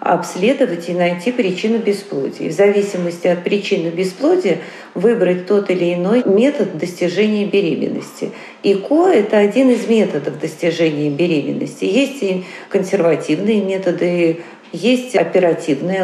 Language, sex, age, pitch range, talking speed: Russian, female, 40-59, 170-210 Hz, 115 wpm